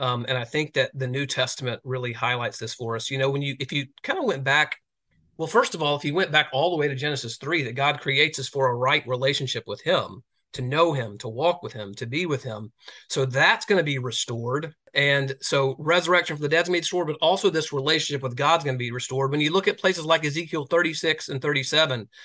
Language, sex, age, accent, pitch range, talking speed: English, male, 30-49, American, 130-150 Hz, 250 wpm